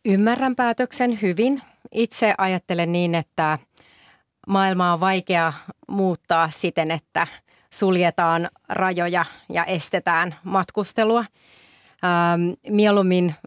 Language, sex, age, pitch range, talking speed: Finnish, female, 30-49, 175-200 Hz, 85 wpm